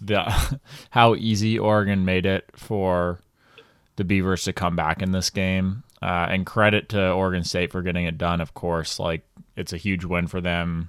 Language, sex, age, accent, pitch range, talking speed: English, male, 20-39, American, 90-105 Hz, 185 wpm